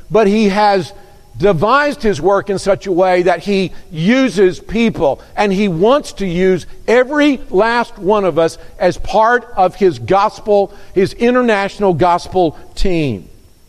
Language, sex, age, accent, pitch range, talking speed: English, male, 50-69, American, 170-210 Hz, 145 wpm